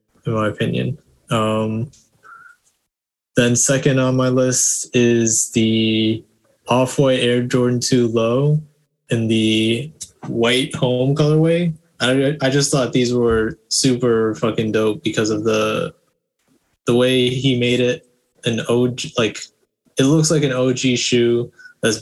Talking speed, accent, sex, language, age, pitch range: 130 wpm, American, male, Finnish, 20-39, 110-130 Hz